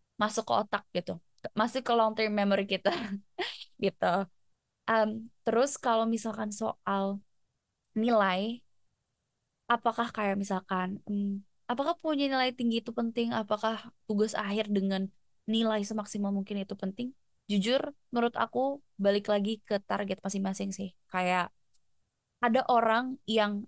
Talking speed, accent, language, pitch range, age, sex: 120 wpm, native, Indonesian, 195-225 Hz, 20-39, female